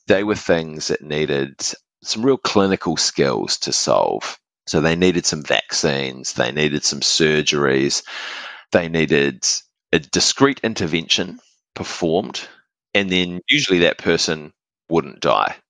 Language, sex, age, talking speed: English, male, 30-49, 125 wpm